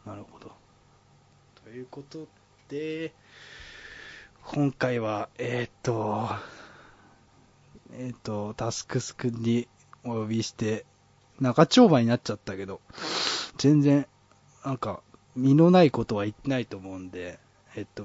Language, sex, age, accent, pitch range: Japanese, male, 20-39, native, 105-135 Hz